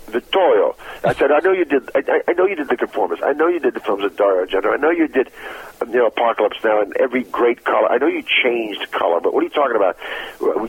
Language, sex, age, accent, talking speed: English, male, 50-69, American, 265 wpm